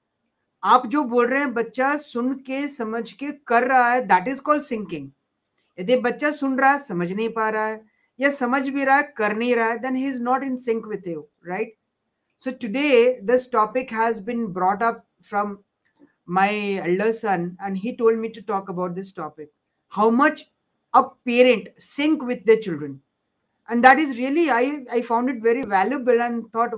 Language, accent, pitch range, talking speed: Hindi, native, 200-255 Hz, 190 wpm